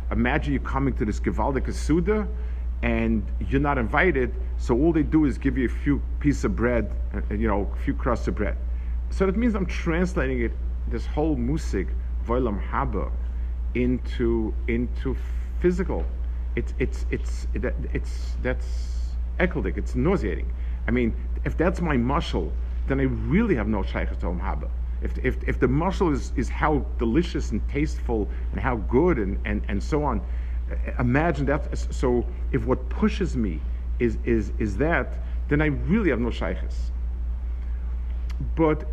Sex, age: male, 50-69